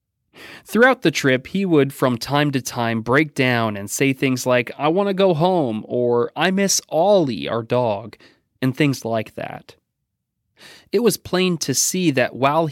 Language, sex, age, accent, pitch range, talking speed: English, male, 30-49, American, 115-160 Hz, 175 wpm